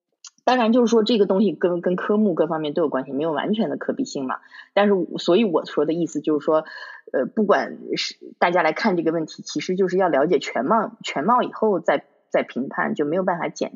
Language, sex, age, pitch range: Chinese, female, 20-39, 160-240 Hz